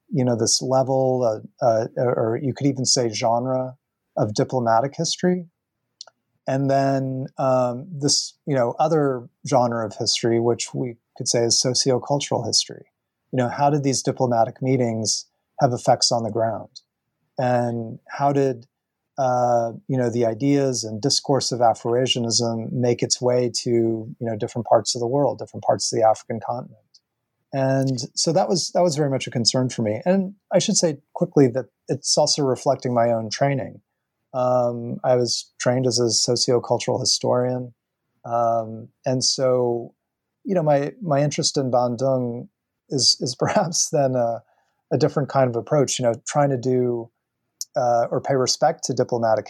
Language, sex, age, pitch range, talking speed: English, male, 30-49, 120-135 Hz, 165 wpm